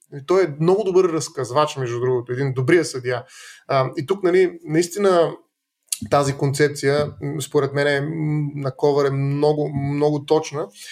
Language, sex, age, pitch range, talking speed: Bulgarian, male, 20-39, 145-185 Hz, 150 wpm